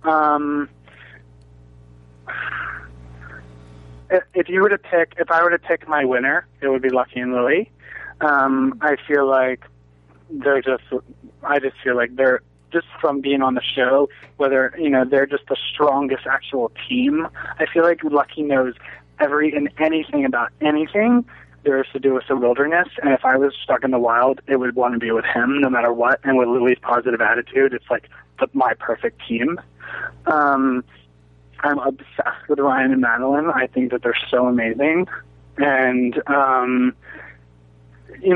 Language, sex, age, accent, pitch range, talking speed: English, male, 30-49, American, 125-150 Hz, 165 wpm